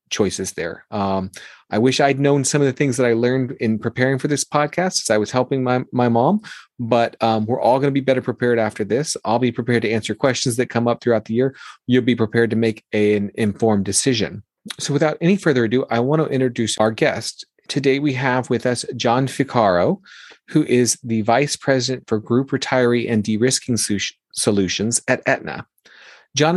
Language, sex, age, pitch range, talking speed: English, male, 30-49, 110-135 Hz, 205 wpm